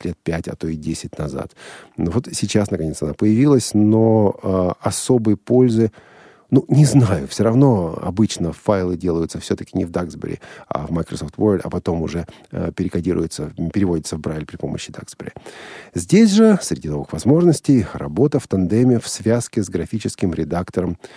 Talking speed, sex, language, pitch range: 155 wpm, male, Russian, 85-125 Hz